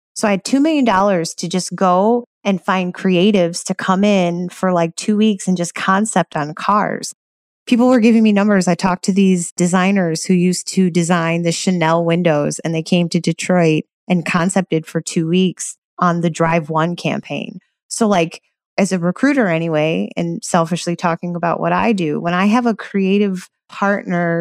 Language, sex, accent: English, female, American